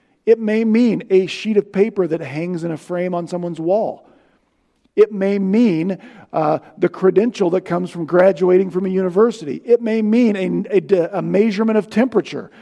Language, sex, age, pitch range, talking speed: English, male, 50-69, 160-215 Hz, 175 wpm